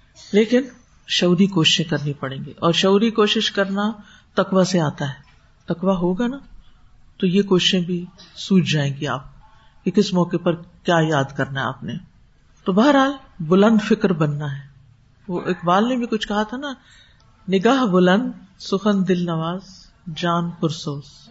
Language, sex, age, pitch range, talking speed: Urdu, female, 50-69, 170-225 Hz, 160 wpm